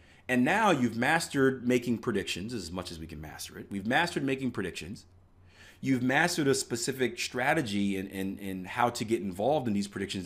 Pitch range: 90-125 Hz